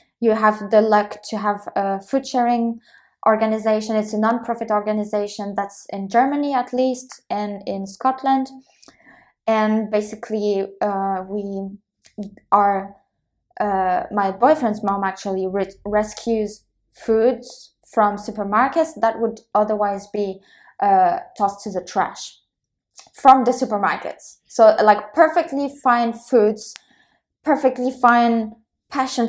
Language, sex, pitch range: English, female, 205-245 Hz